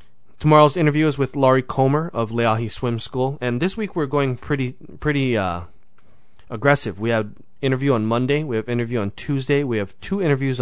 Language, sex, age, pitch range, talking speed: English, male, 30-49, 105-130 Hz, 185 wpm